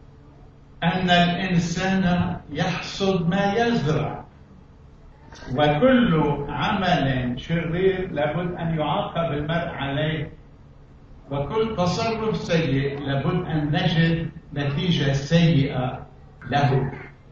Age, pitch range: 60-79, 135-175 Hz